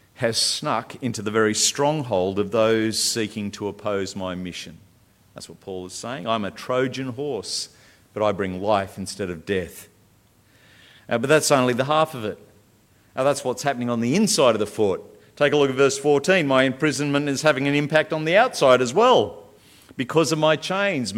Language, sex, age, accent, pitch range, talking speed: English, male, 50-69, Australian, 110-150 Hz, 195 wpm